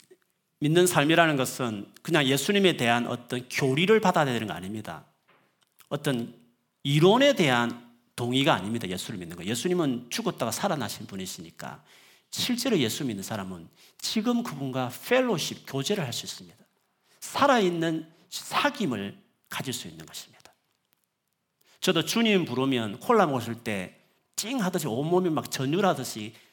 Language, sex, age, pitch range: Korean, male, 40-59, 120-190 Hz